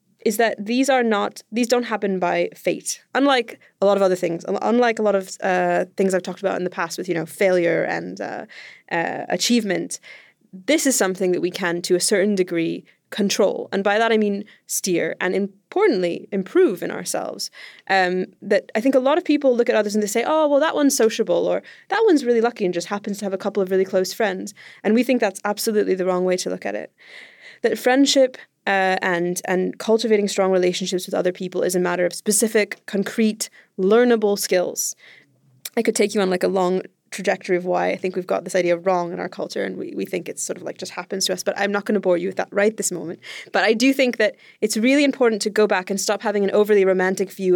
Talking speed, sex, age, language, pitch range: 235 wpm, female, 20-39, English, 185-225 Hz